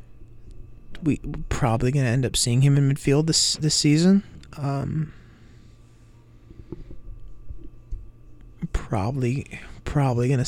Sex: male